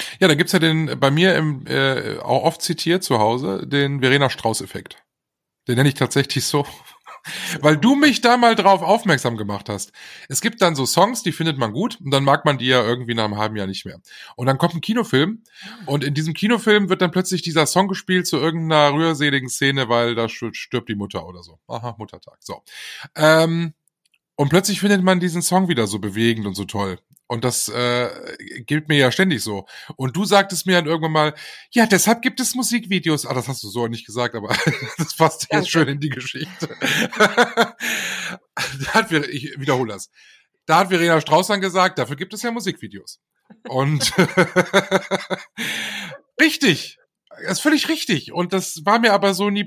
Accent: German